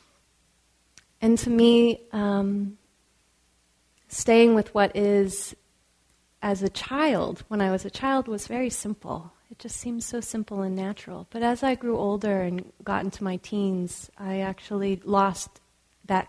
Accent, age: American, 30-49